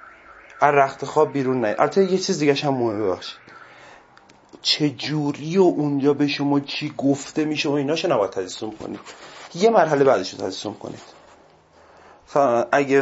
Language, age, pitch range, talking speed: Persian, 30-49, 120-150 Hz, 135 wpm